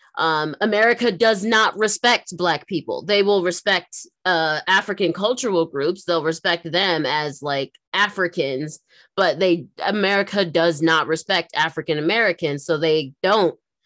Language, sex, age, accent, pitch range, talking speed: English, female, 20-39, American, 180-260 Hz, 135 wpm